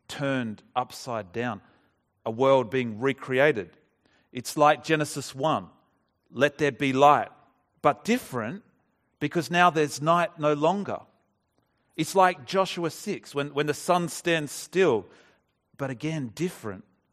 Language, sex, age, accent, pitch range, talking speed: English, male, 40-59, Australian, 120-145 Hz, 125 wpm